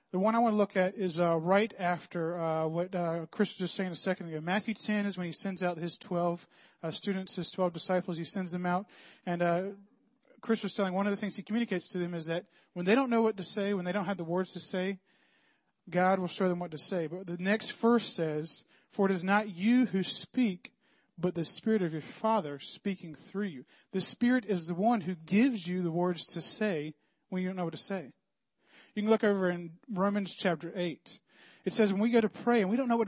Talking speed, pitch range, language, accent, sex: 245 wpm, 175-210 Hz, English, American, male